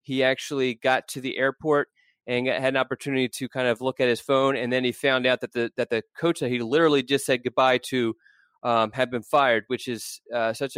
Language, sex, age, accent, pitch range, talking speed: English, male, 30-49, American, 125-140 Hz, 235 wpm